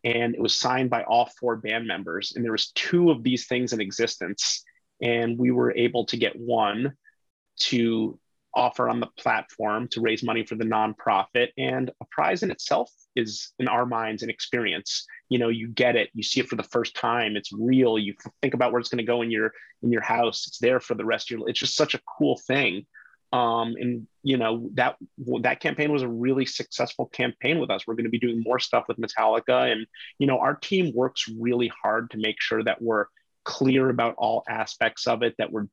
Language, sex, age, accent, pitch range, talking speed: English, male, 30-49, American, 115-130 Hz, 220 wpm